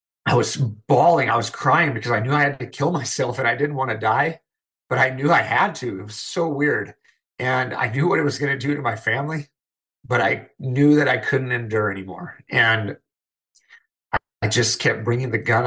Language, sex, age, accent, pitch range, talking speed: English, male, 30-49, American, 105-125 Hz, 220 wpm